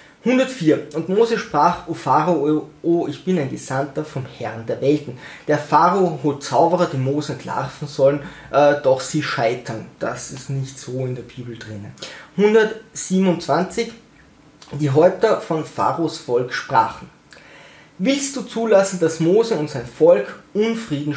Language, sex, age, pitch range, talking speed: German, male, 20-39, 140-185 Hz, 145 wpm